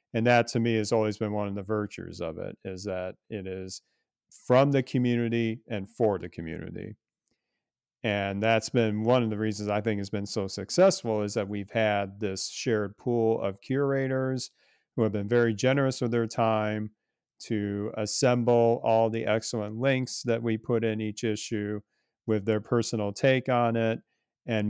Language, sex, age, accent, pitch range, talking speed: English, male, 40-59, American, 100-115 Hz, 175 wpm